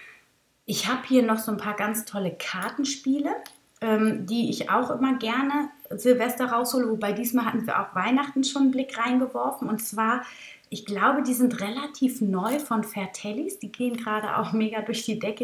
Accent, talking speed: German, 180 wpm